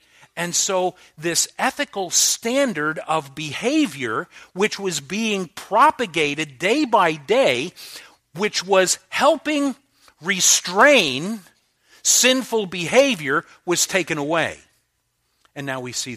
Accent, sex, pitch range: American, male, 125-190 Hz